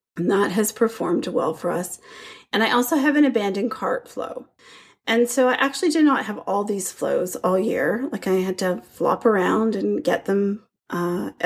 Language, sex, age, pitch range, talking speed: English, female, 30-49, 185-255 Hz, 195 wpm